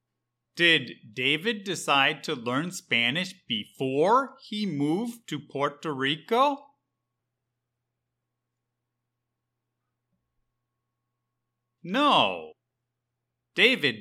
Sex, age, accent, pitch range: male, 30-49, American, 120-155 Hz